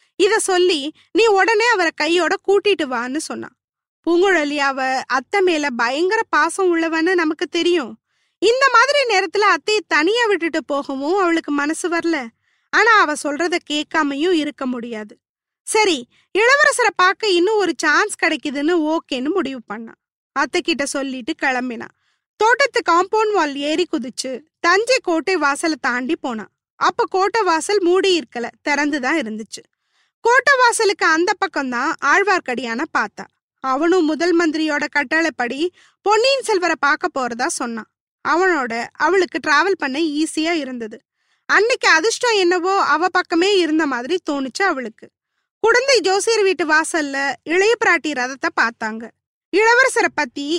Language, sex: Tamil, female